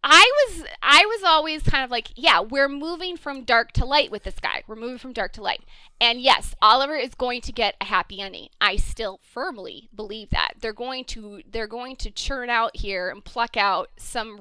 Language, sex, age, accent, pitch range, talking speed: English, female, 20-39, American, 220-295 Hz, 215 wpm